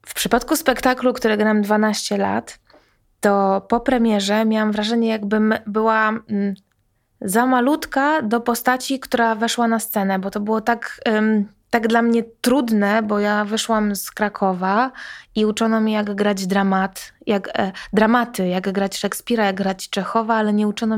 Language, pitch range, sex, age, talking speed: Polish, 200-225 Hz, female, 20-39, 150 wpm